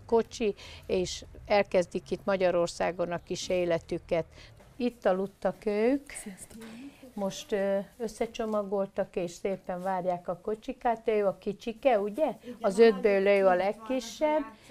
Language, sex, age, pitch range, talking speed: Hungarian, female, 50-69, 185-225 Hz, 110 wpm